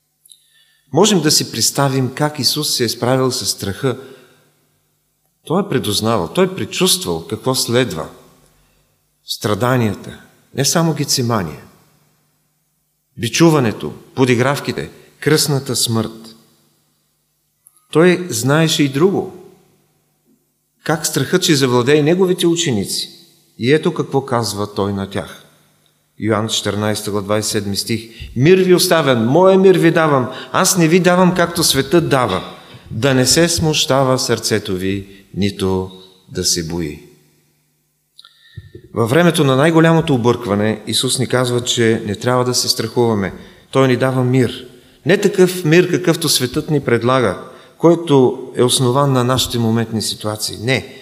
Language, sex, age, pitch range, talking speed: English, male, 40-59, 110-155 Hz, 120 wpm